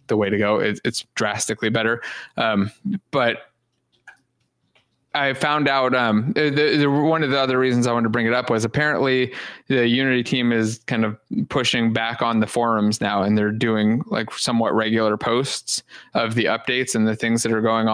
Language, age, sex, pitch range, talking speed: English, 20-39, male, 110-125 Hz, 180 wpm